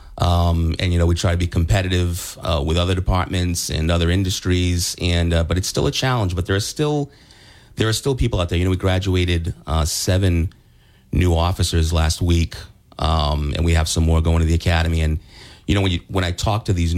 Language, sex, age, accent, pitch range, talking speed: English, male, 30-49, American, 85-95 Hz, 225 wpm